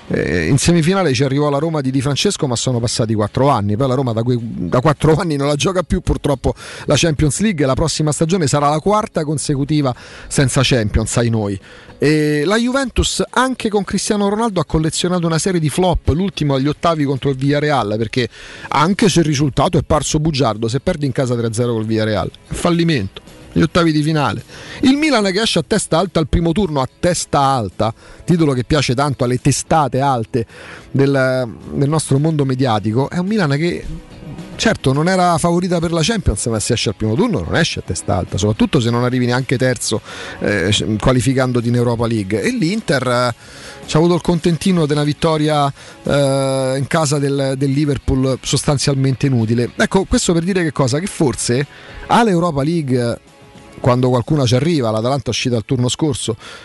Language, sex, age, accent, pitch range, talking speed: Italian, male, 40-59, native, 125-170 Hz, 185 wpm